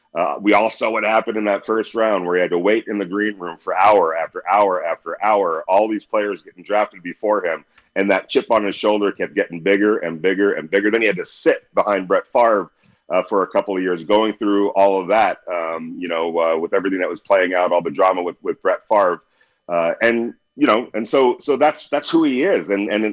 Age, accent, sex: 40-59, American, male